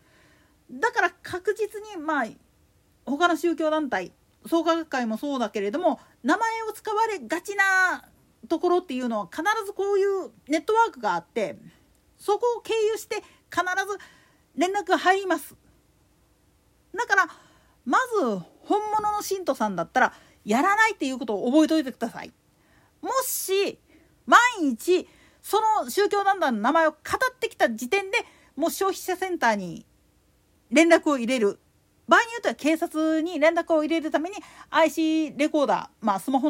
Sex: female